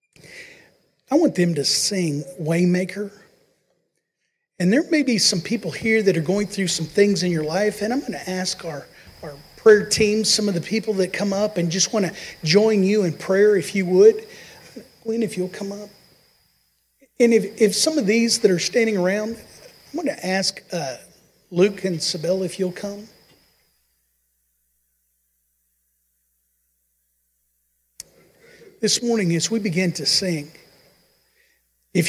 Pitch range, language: 170-220 Hz, English